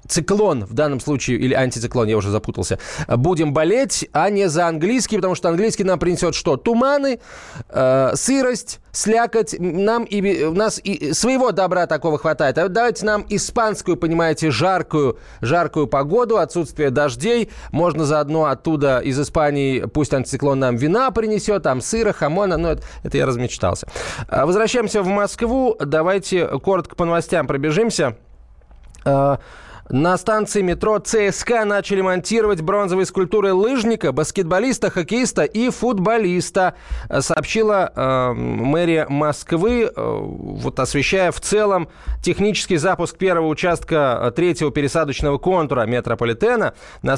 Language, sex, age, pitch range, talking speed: Russian, male, 20-39, 135-195 Hz, 130 wpm